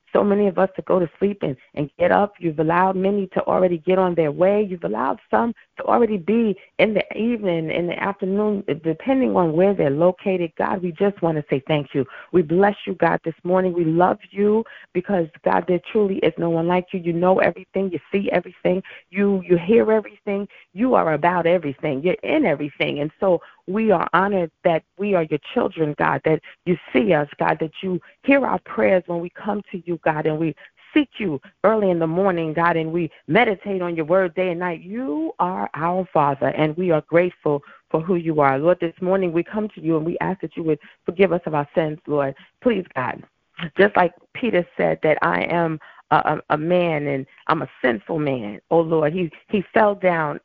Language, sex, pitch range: English, female, 160-195 Hz